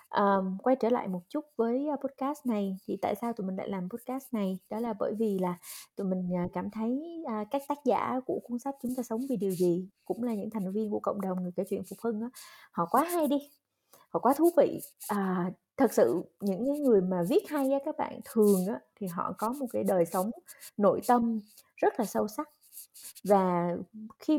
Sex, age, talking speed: female, 20-39, 205 wpm